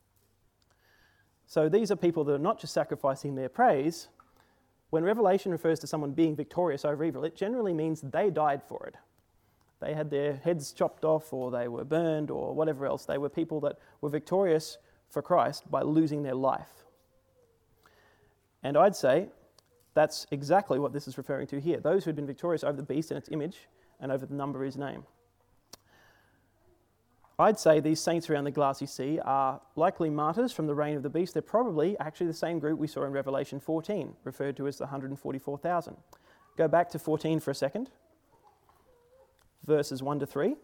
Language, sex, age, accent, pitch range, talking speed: English, male, 30-49, Australian, 140-165 Hz, 180 wpm